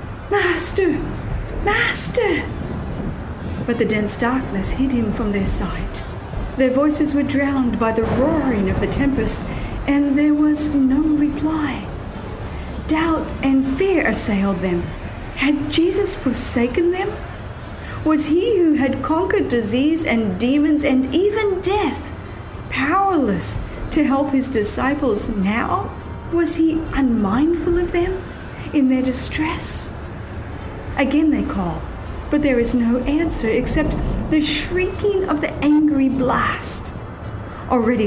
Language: English